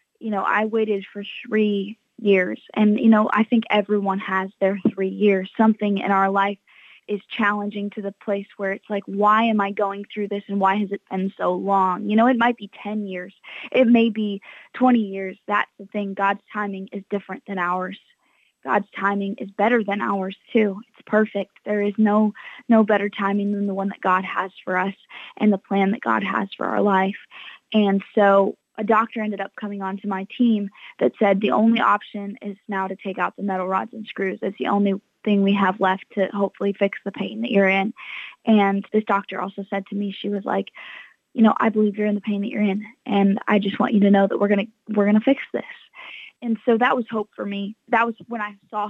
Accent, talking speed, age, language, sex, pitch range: American, 225 wpm, 20-39, English, female, 195-215 Hz